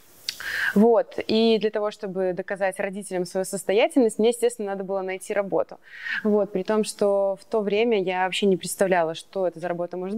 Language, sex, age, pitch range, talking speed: Russian, female, 20-39, 190-240 Hz, 170 wpm